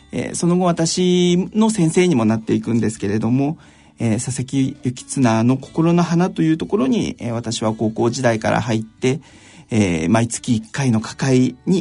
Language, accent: Japanese, native